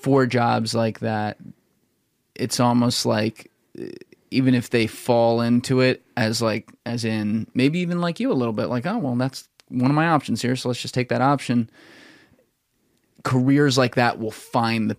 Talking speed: 180 wpm